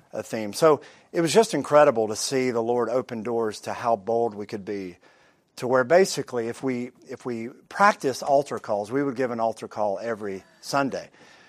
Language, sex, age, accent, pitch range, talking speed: English, male, 50-69, American, 115-155 Hz, 195 wpm